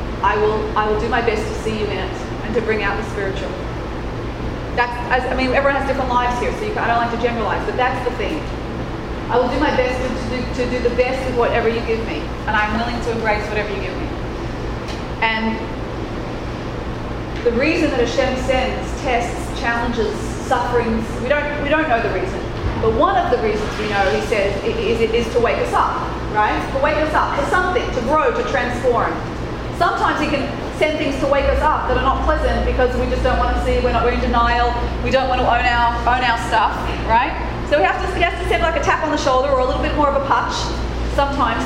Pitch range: 225-280 Hz